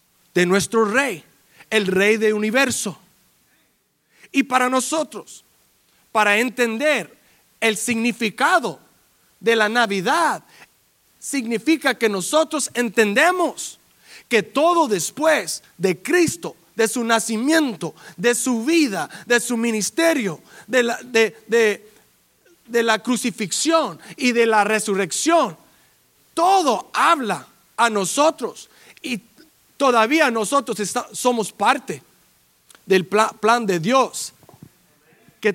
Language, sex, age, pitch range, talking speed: English, male, 40-59, 205-260 Hz, 105 wpm